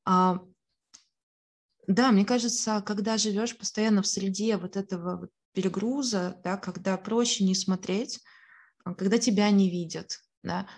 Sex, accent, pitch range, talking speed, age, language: female, native, 180-210 Hz, 105 wpm, 20-39, Russian